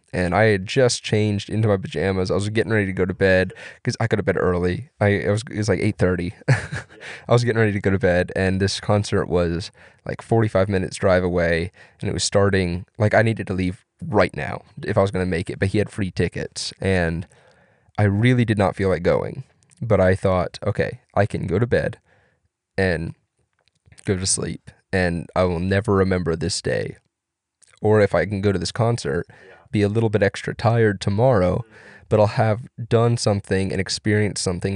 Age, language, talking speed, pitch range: 20-39, English, 205 wpm, 95-110 Hz